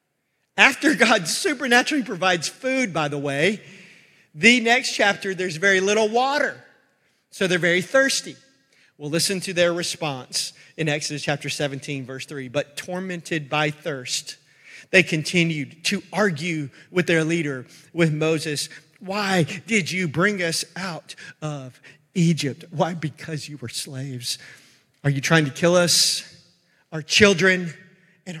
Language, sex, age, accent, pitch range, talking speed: English, male, 40-59, American, 150-190 Hz, 135 wpm